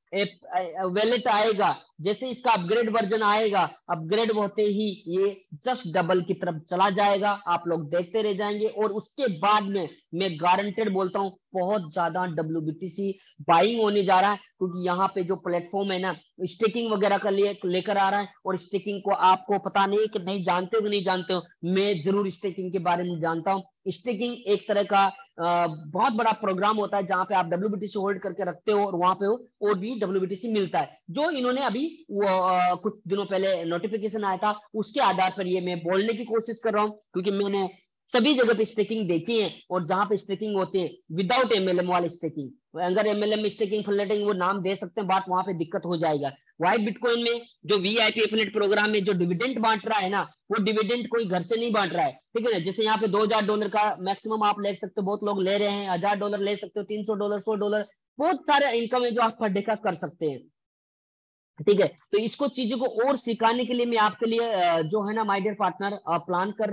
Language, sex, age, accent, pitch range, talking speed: Hindi, female, 20-39, native, 185-215 Hz, 200 wpm